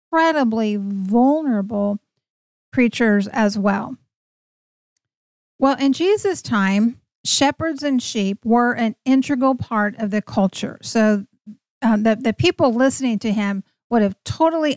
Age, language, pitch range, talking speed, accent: 50-69, English, 210-260 Hz, 120 wpm, American